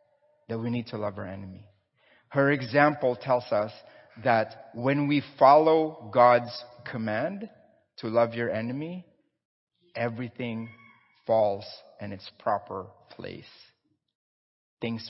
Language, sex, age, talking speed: English, male, 30-49, 110 wpm